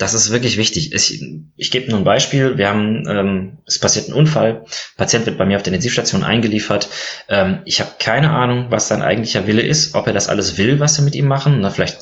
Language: German